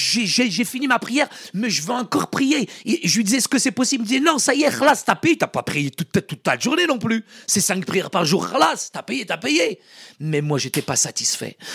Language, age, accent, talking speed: French, 50-69, French, 245 wpm